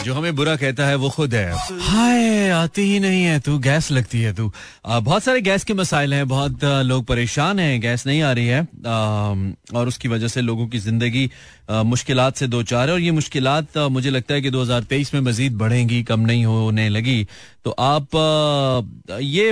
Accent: native